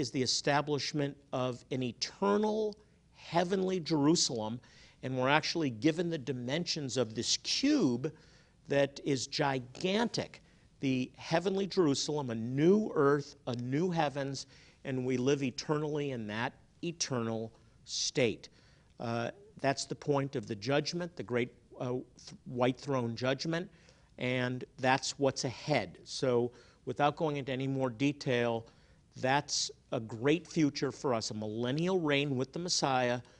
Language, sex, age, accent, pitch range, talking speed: English, male, 50-69, American, 120-145 Hz, 130 wpm